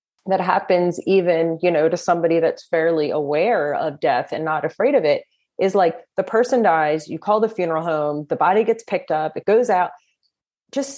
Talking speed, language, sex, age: 195 wpm, English, female, 30-49